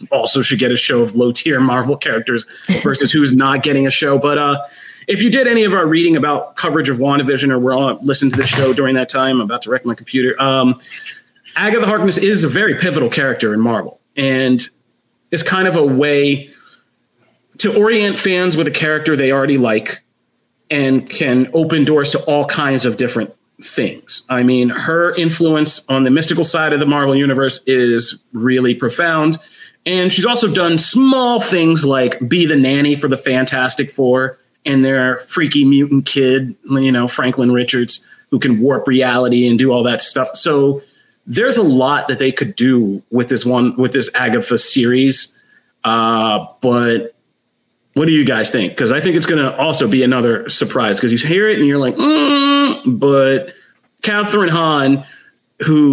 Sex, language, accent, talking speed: male, English, American, 185 wpm